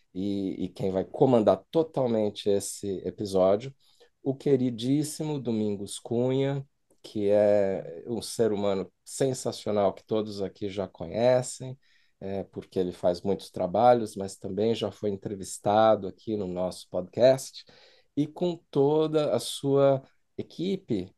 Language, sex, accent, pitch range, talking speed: Portuguese, male, Brazilian, 100-130 Hz, 120 wpm